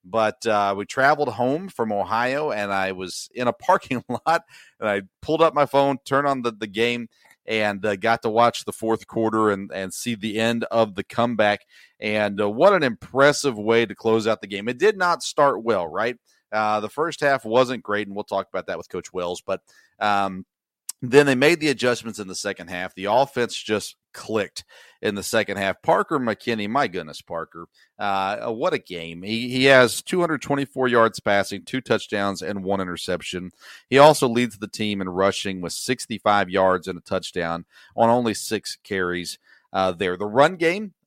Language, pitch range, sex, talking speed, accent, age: English, 95-125 Hz, male, 195 wpm, American, 40-59